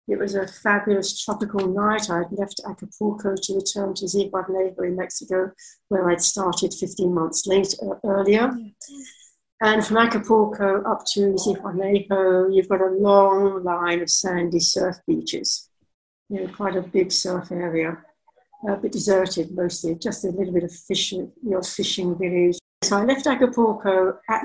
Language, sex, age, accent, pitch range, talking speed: English, female, 60-79, British, 175-205 Hz, 155 wpm